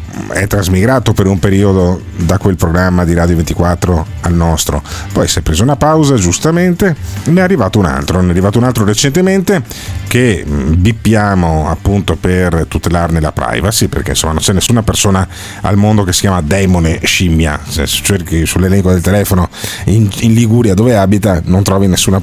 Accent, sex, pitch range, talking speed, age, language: native, male, 90-115 Hz, 180 wpm, 40-59, Italian